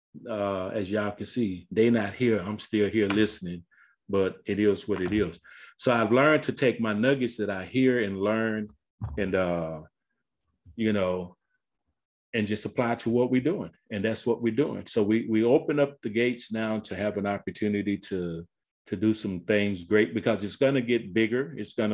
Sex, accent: male, American